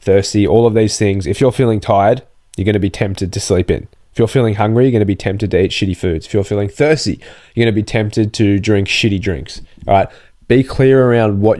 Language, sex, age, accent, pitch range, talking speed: English, male, 20-39, Australian, 100-120 Hz, 255 wpm